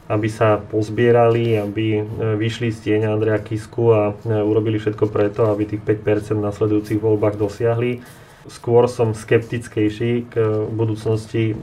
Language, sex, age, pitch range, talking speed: Slovak, male, 30-49, 110-120 Hz, 130 wpm